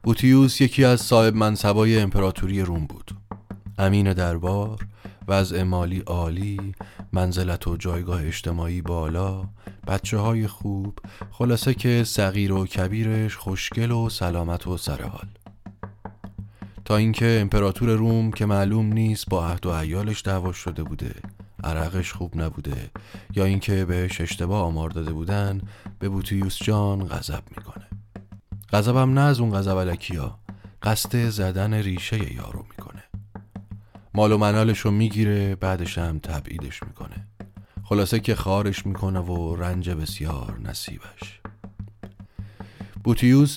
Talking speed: 125 wpm